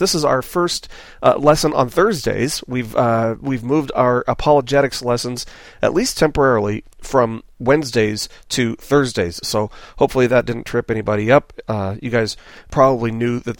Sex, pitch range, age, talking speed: male, 115-140 Hz, 40-59, 155 wpm